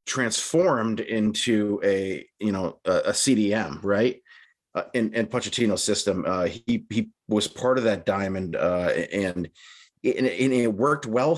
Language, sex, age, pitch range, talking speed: English, male, 30-49, 100-125 Hz, 160 wpm